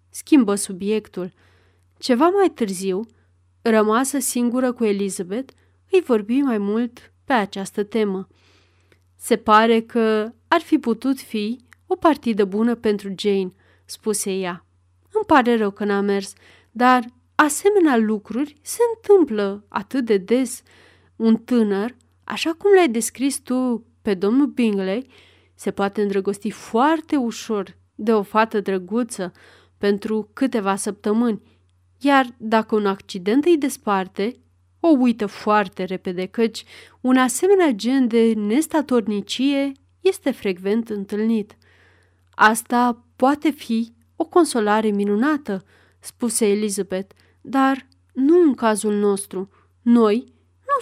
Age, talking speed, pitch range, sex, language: 30-49, 120 wpm, 200-255 Hz, female, Romanian